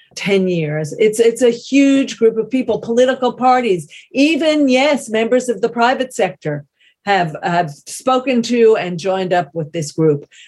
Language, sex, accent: English, female, American